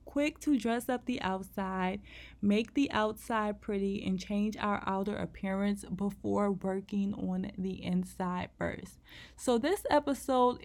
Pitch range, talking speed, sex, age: 190-235 Hz, 135 wpm, female, 20-39